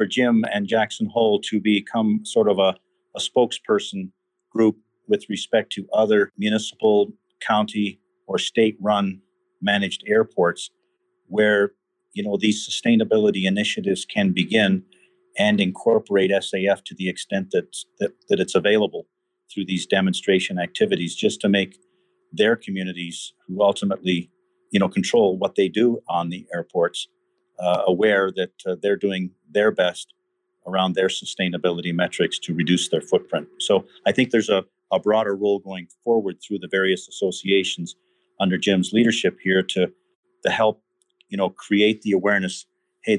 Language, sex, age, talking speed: English, male, 50-69, 145 wpm